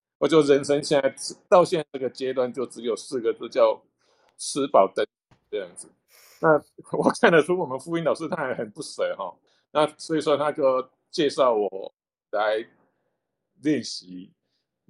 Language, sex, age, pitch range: Chinese, male, 50-69, 135-185 Hz